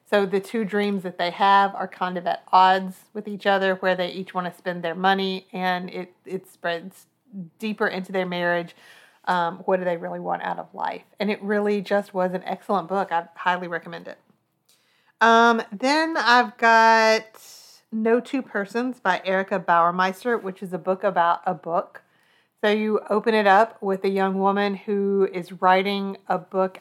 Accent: American